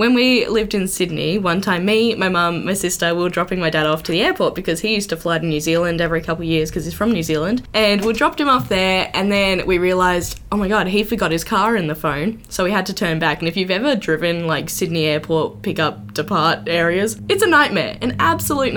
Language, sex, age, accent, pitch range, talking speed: English, female, 10-29, Australian, 160-215 Hz, 260 wpm